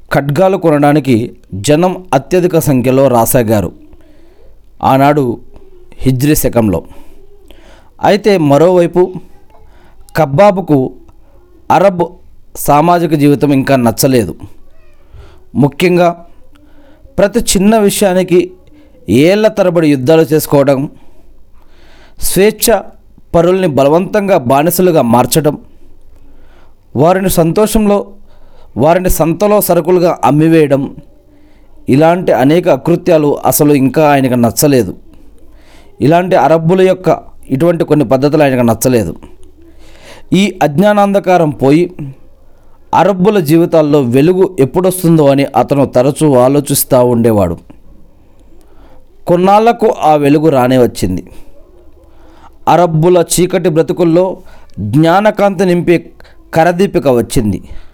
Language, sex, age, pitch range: Telugu, male, 40-59, 130-180 Hz